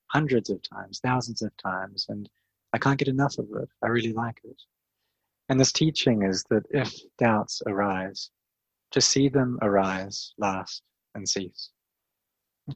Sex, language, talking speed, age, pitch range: male, English, 155 wpm, 30-49, 100-125 Hz